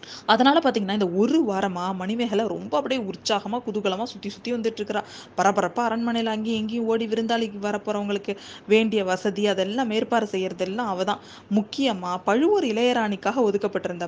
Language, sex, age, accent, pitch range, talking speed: Tamil, female, 20-39, native, 190-235 Hz, 120 wpm